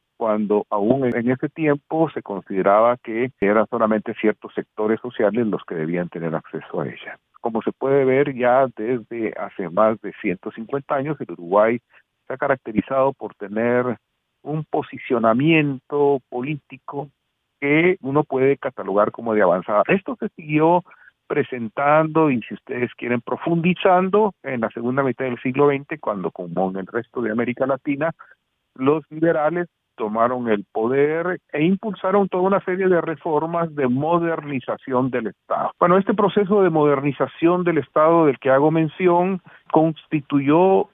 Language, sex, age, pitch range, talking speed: Spanish, male, 50-69, 115-155 Hz, 145 wpm